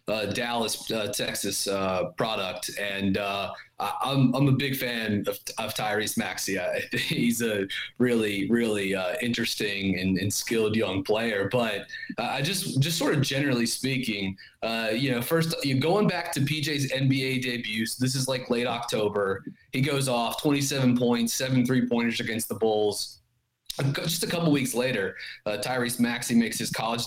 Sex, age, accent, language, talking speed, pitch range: male, 20-39, American, English, 165 wpm, 115-135 Hz